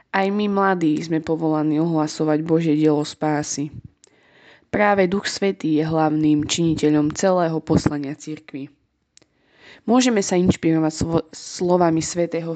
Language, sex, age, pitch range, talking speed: Slovak, female, 20-39, 155-180 Hz, 115 wpm